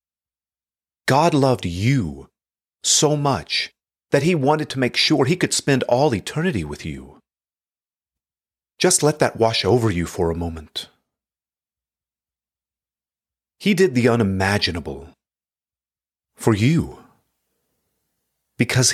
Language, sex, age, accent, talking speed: English, male, 40-59, American, 110 wpm